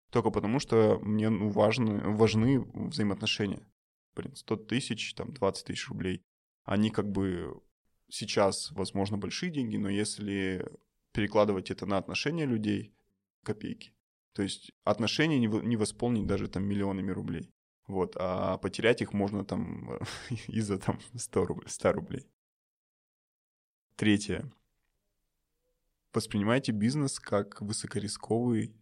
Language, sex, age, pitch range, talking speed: Russian, male, 20-39, 100-120 Hz, 105 wpm